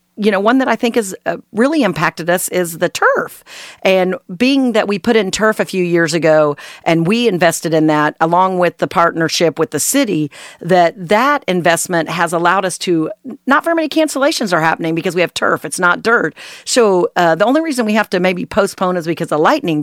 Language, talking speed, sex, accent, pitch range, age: English, 210 wpm, female, American, 160-210 Hz, 40-59